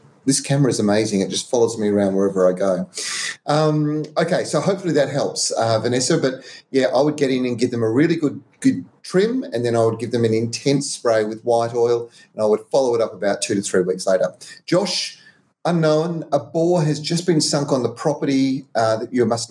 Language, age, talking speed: English, 40-59, 225 wpm